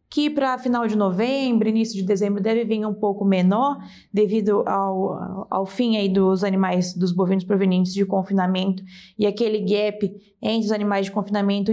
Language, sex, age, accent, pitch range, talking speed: Portuguese, female, 20-39, Brazilian, 195-235 Hz, 165 wpm